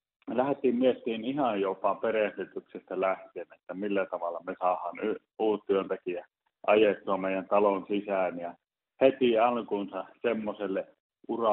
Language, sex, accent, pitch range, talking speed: Finnish, male, native, 95-110 Hz, 115 wpm